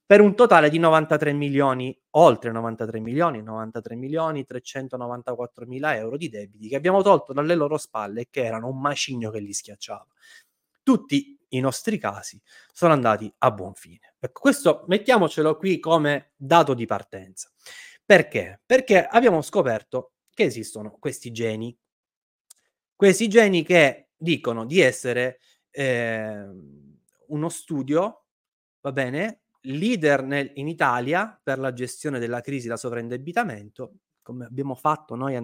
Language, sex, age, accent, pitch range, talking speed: Italian, male, 20-39, native, 120-170 Hz, 135 wpm